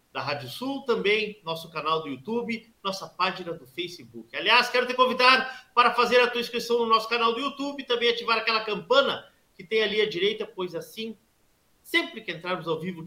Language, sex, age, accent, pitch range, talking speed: Portuguese, male, 50-69, Brazilian, 170-245 Hz, 195 wpm